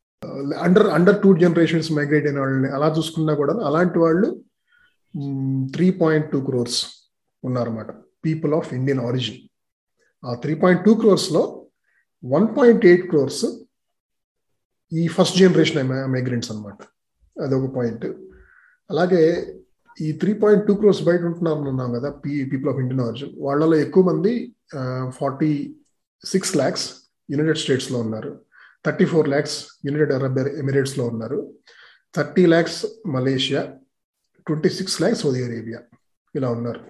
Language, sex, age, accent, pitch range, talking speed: Telugu, male, 30-49, native, 135-190 Hz, 115 wpm